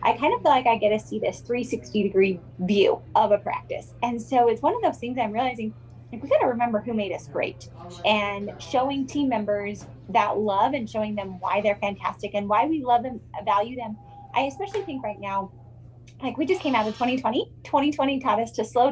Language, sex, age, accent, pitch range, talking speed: English, female, 20-39, American, 205-260 Hz, 220 wpm